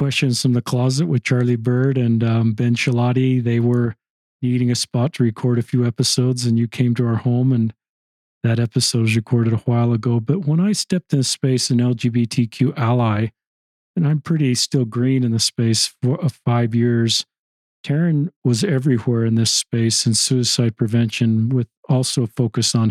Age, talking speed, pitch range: 40-59, 185 wpm, 115-130 Hz